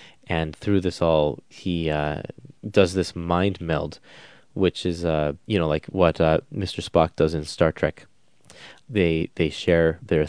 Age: 20-39